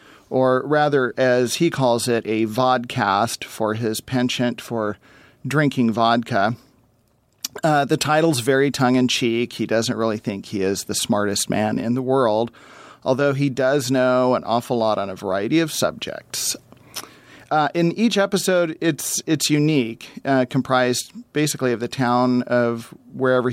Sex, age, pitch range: male, 40-59, 120-145 Hz